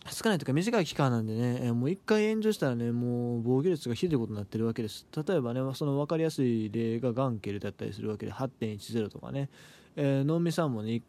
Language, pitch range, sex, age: Japanese, 120-160 Hz, male, 20-39